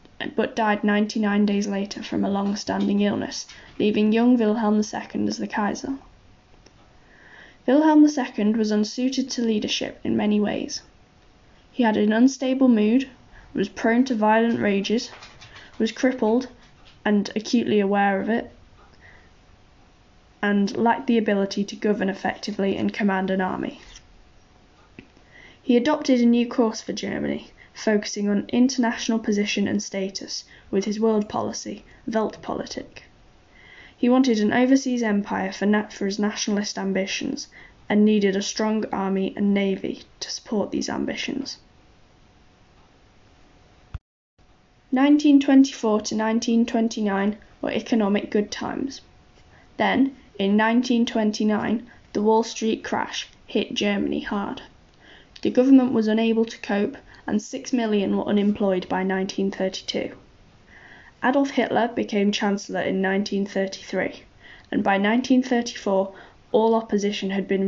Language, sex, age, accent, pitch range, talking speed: English, female, 10-29, British, 195-235 Hz, 120 wpm